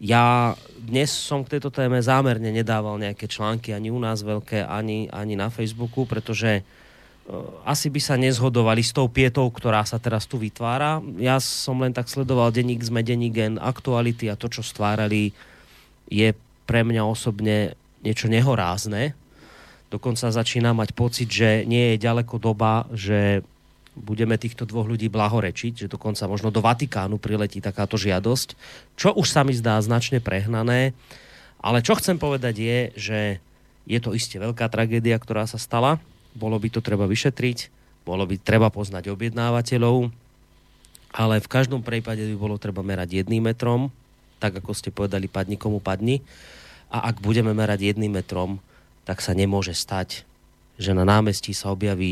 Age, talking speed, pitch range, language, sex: 30-49, 155 wpm, 105-120 Hz, Slovak, male